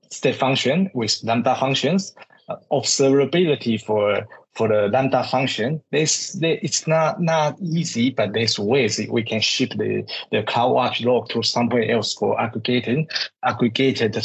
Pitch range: 110-130 Hz